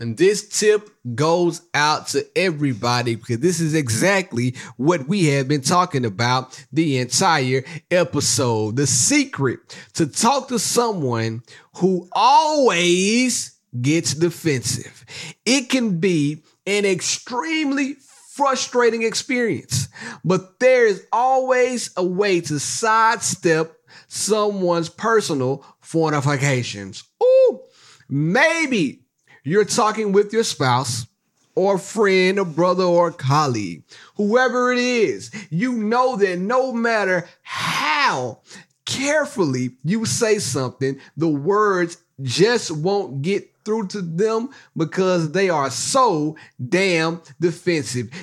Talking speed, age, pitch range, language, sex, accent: 110 wpm, 30-49, 150-230 Hz, English, male, American